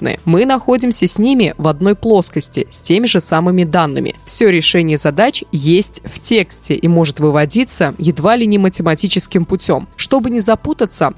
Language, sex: Russian, female